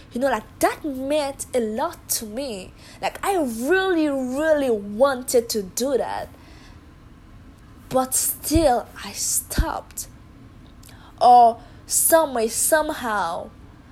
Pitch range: 210-265 Hz